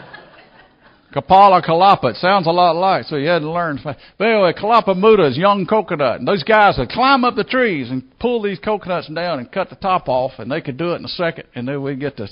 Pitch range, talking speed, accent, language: 135-180 Hz, 245 wpm, American, English